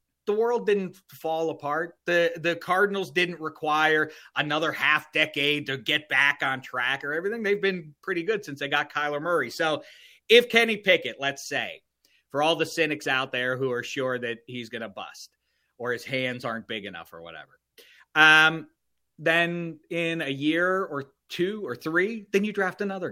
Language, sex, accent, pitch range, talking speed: English, male, American, 130-170 Hz, 180 wpm